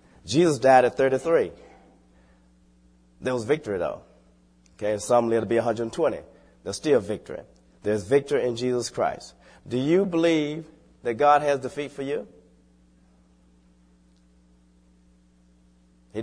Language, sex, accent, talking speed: English, male, American, 120 wpm